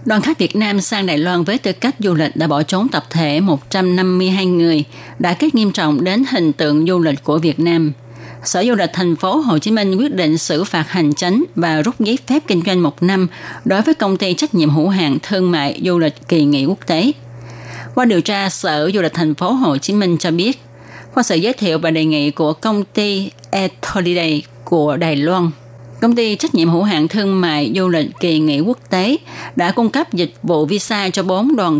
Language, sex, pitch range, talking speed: Vietnamese, female, 155-200 Hz, 225 wpm